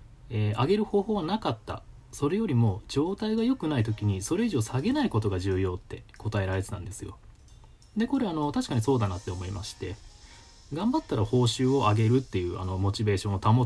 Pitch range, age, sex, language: 100-140 Hz, 20-39, male, Japanese